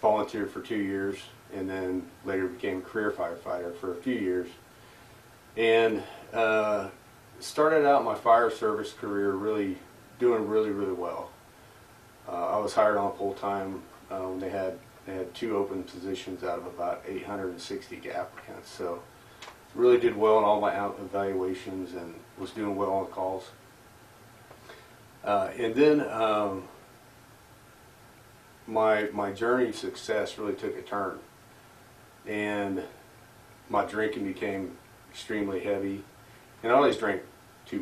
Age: 40-59